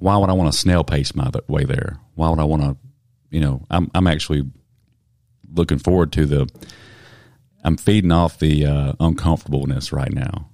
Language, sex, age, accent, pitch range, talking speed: English, male, 40-59, American, 75-90 Hz, 180 wpm